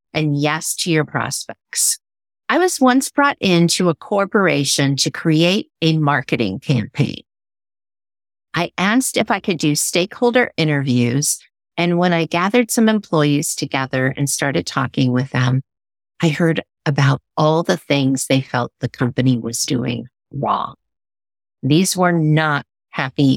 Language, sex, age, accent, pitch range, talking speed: English, female, 50-69, American, 130-175 Hz, 140 wpm